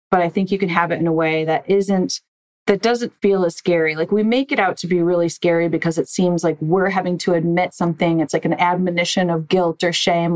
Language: English